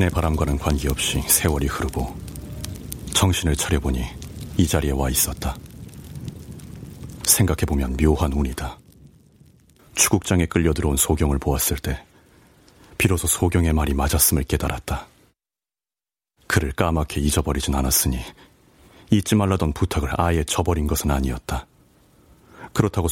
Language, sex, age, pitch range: Korean, male, 40-59, 70-90 Hz